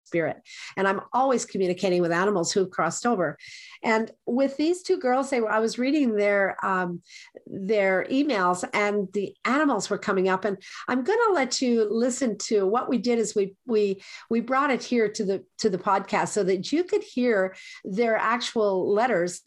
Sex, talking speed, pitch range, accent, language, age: female, 190 wpm, 195-250 Hz, American, English, 50-69